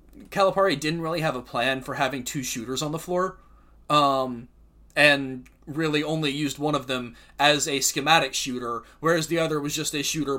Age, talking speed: 30-49, 185 wpm